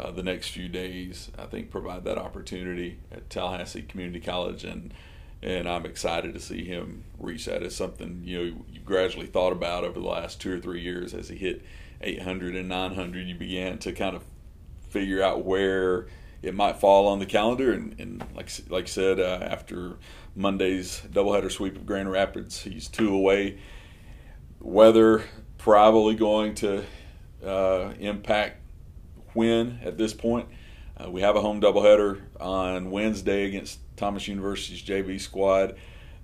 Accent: American